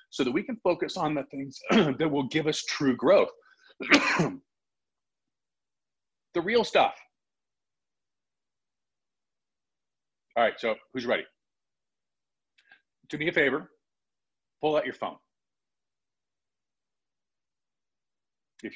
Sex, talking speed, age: male, 100 wpm, 40-59